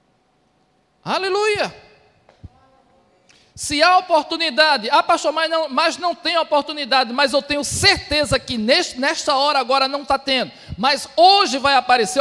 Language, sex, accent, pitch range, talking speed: Portuguese, male, Brazilian, 230-305 Hz, 130 wpm